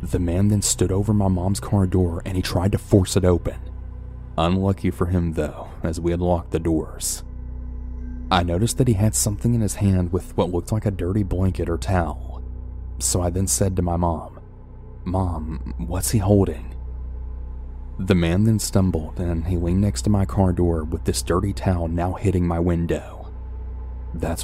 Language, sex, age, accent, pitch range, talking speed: English, male, 30-49, American, 80-95 Hz, 185 wpm